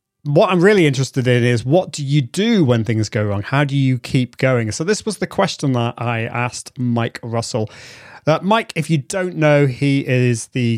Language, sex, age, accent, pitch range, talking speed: English, male, 30-49, British, 120-155 Hz, 210 wpm